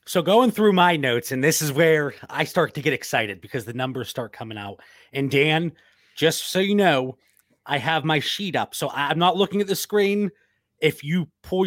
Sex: male